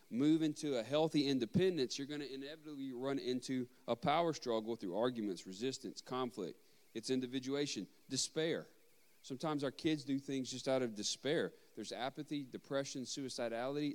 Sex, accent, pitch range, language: male, American, 115-145 Hz, English